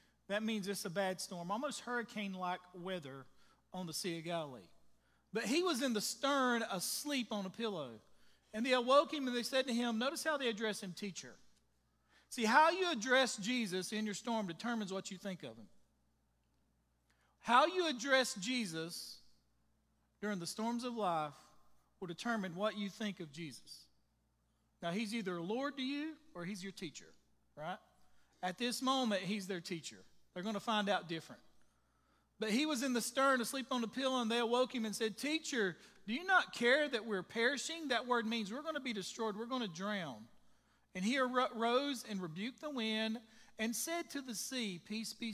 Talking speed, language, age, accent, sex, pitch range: 185 wpm, English, 40-59, American, male, 180-245 Hz